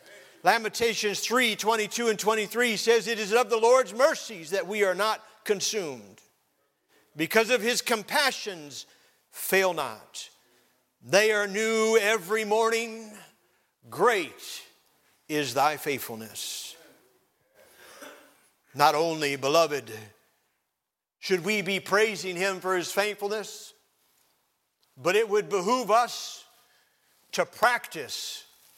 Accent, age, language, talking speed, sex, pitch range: American, 50-69, English, 105 wpm, male, 195-240 Hz